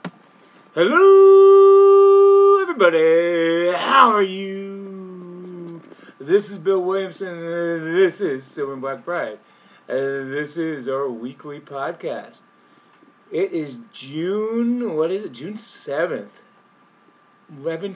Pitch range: 150-215 Hz